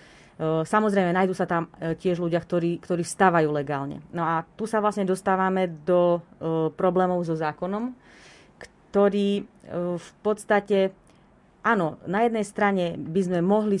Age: 30-49